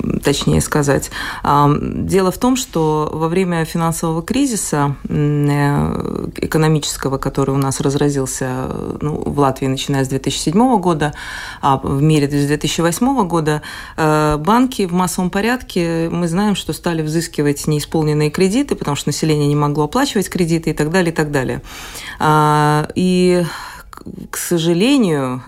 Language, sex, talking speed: Russian, female, 130 wpm